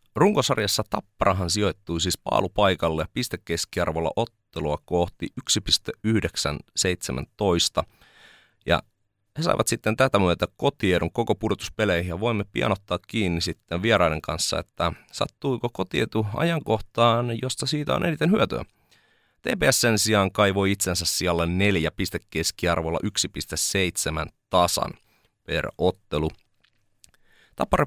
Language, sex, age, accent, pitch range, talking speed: Finnish, male, 30-49, native, 85-105 Hz, 105 wpm